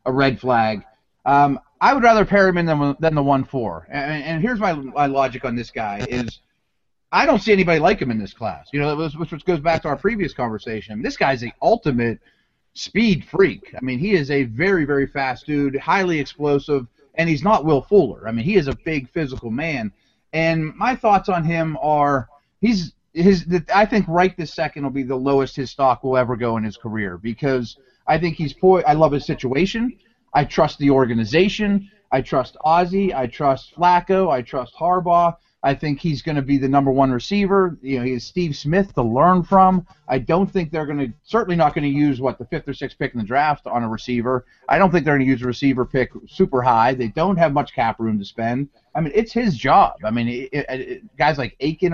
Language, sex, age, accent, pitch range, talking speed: English, male, 30-49, American, 130-175 Hz, 225 wpm